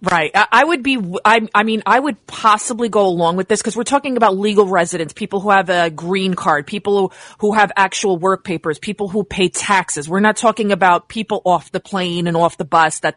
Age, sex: 30-49, female